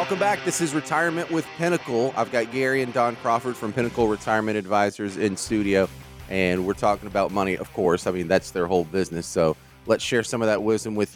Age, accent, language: 30-49, American, English